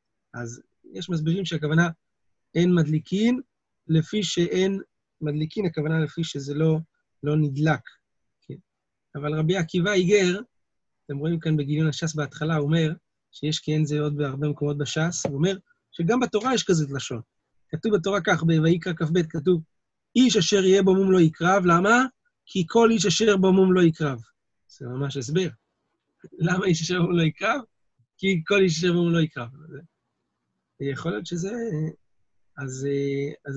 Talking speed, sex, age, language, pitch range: 150 wpm, male, 30-49, Hebrew, 145-185 Hz